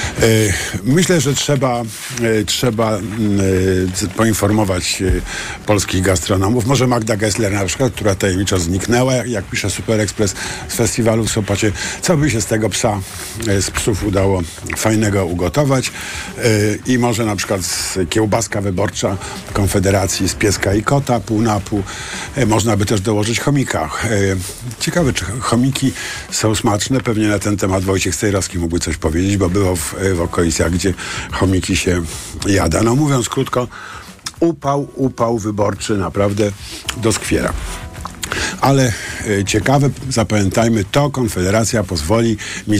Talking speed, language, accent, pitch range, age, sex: 130 wpm, Polish, native, 95-115 Hz, 50-69, male